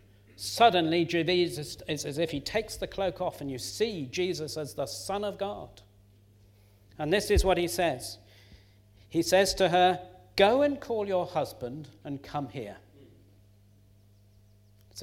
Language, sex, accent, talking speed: English, male, British, 155 wpm